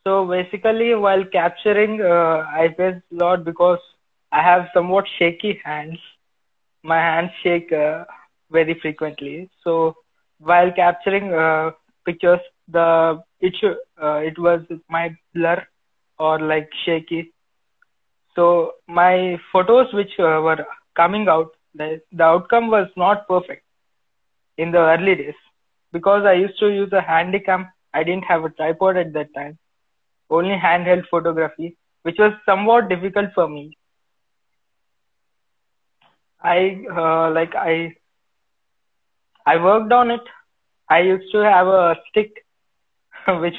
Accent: Indian